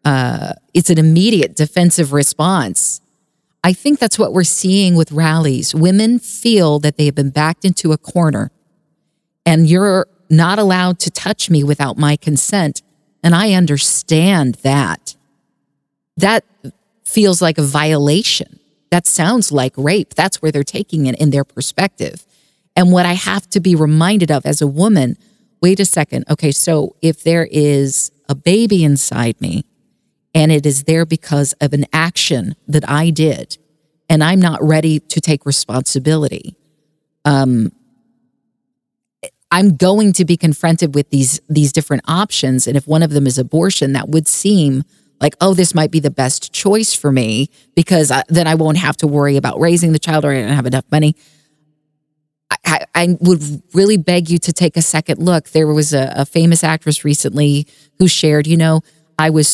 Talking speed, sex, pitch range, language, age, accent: 170 wpm, female, 145-180 Hz, English, 40-59, American